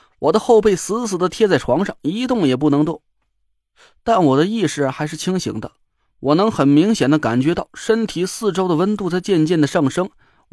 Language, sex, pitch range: Chinese, male, 150-220 Hz